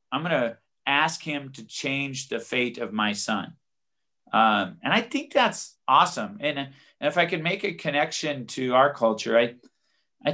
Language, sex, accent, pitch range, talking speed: English, male, American, 115-150 Hz, 180 wpm